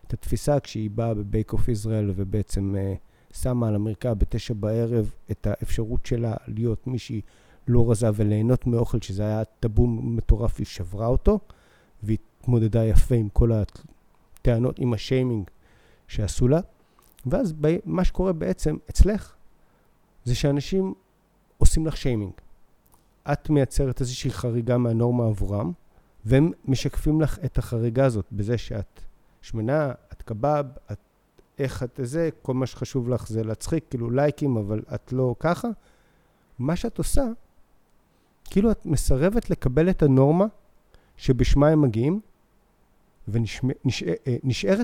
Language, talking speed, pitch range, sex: Hebrew, 125 wpm, 110-145 Hz, male